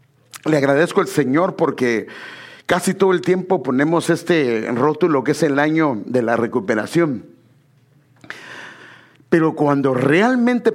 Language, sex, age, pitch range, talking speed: English, male, 50-69, 130-180 Hz, 125 wpm